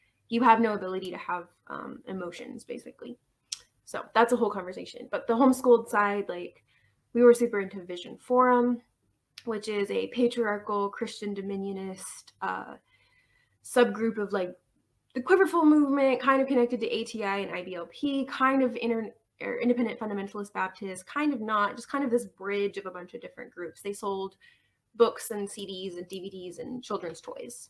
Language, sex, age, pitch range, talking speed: English, female, 20-39, 190-240 Hz, 160 wpm